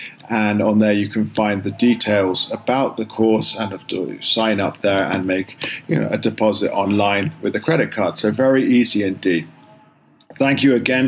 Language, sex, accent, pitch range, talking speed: English, male, British, 105-130 Hz, 185 wpm